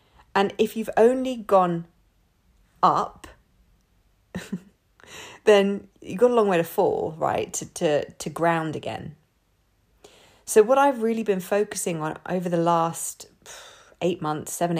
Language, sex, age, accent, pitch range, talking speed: English, female, 40-59, British, 160-205 Hz, 135 wpm